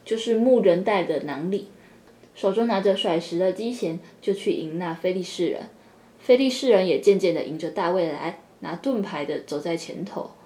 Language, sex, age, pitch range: Chinese, female, 10-29, 180-235 Hz